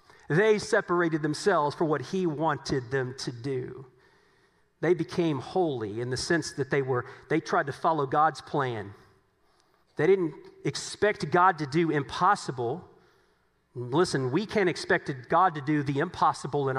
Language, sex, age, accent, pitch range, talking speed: English, male, 40-59, American, 125-155 Hz, 150 wpm